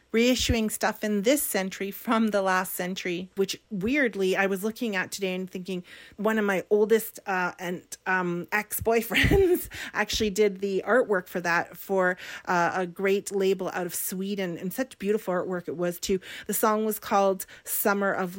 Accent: American